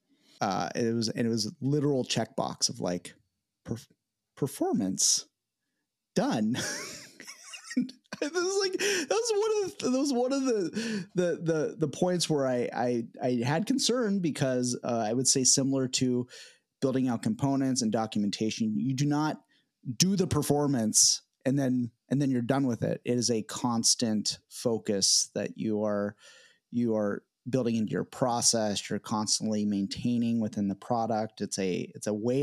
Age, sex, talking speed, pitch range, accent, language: 30-49, male, 165 wpm, 110-150 Hz, American, English